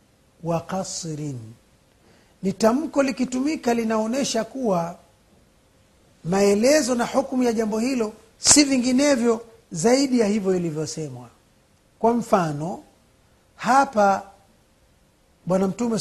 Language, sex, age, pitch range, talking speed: Swahili, male, 50-69, 165-235 Hz, 80 wpm